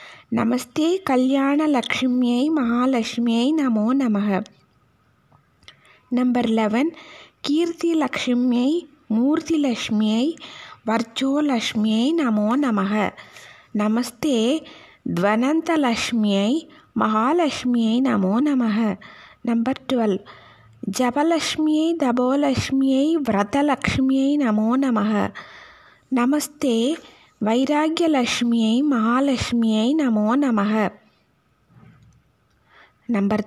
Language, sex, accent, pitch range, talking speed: Tamil, female, native, 220-290 Hz, 50 wpm